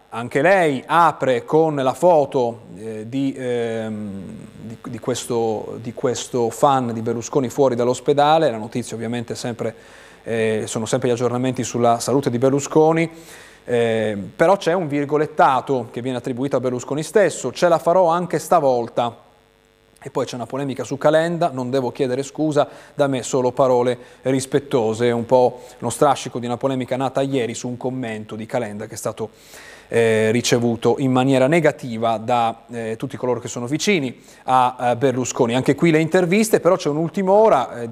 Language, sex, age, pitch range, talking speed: Italian, male, 30-49, 120-155 Hz, 165 wpm